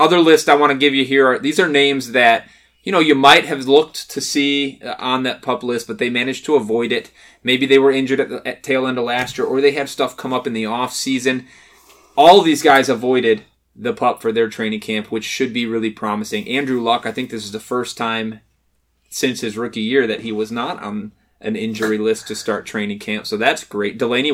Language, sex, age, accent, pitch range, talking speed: English, male, 20-39, American, 110-135 Hz, 240 wpm